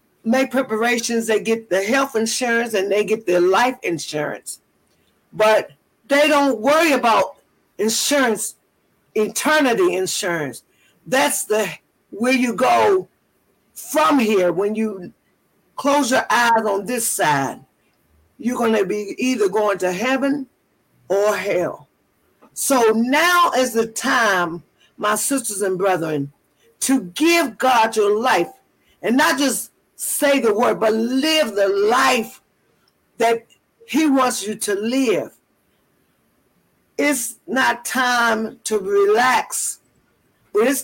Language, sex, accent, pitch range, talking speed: English, female, American, 200-270 Hz, 120 wpm